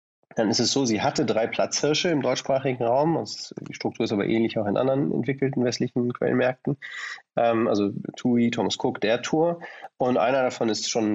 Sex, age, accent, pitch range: male, 30-49, German, 105-130 Hz